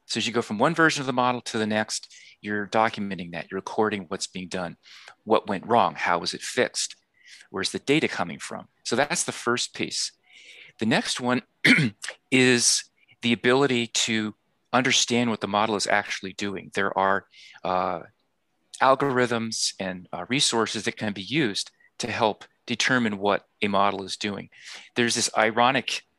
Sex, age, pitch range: male, 40-59, 100-125 Hz